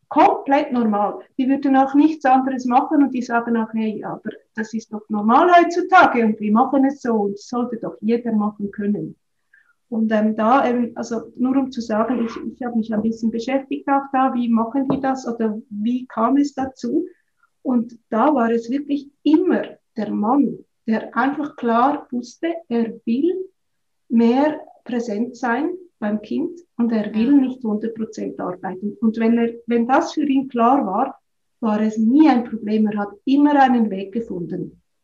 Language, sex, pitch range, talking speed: German, female, 215-265 Hz, 170 wpm